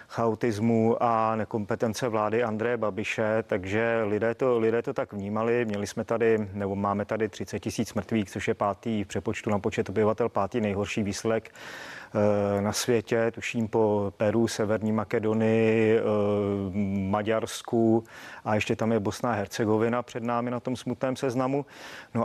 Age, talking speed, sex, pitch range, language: 40-59, 150 wpm, male, 105-125 Hz, Czech